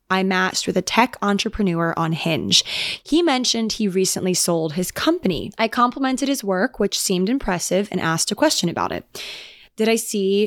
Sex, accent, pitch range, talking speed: female, American, 175-230 Hz, 180 wpm